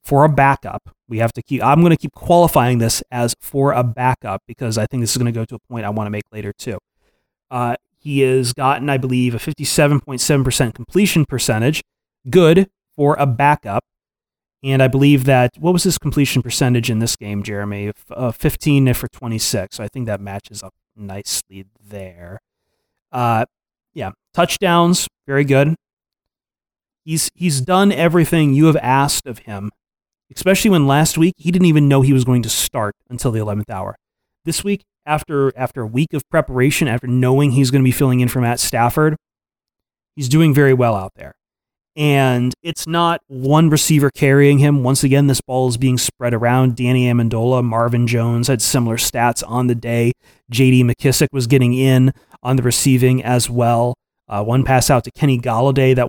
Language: English